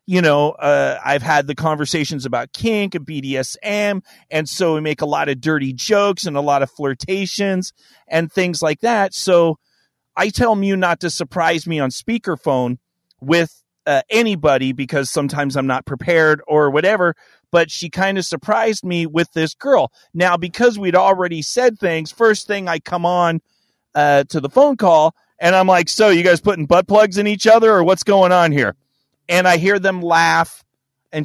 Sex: male